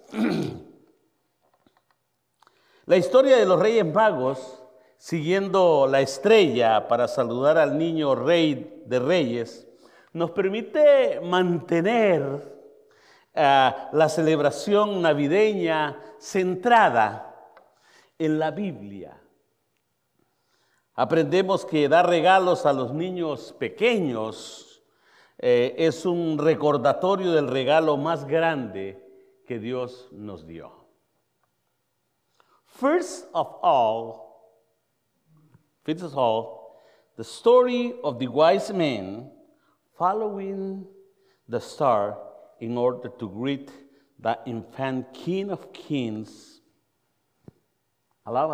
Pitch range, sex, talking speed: 135-205 Hz, male, 85 wpm